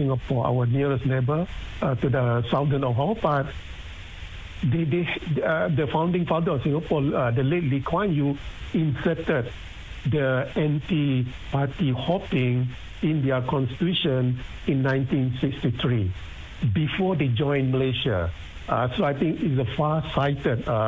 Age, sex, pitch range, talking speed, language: 60-79, male, 125-155 Hz, 125 wpm, English